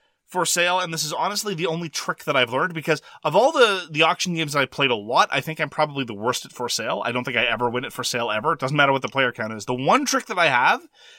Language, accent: English, American